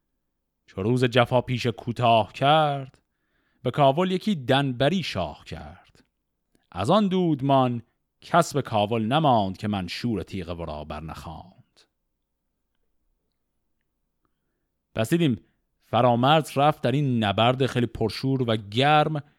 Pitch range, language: 115-155 Hz, Persian